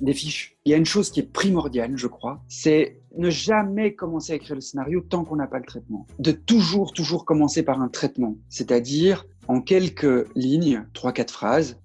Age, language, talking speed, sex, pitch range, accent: 40-59, French, 205 wpm, male, 130-175 Hz, French